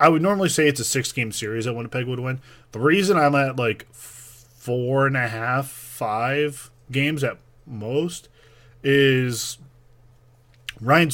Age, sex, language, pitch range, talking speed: 20-39, male, English, 120-145 Hz, 145 wpm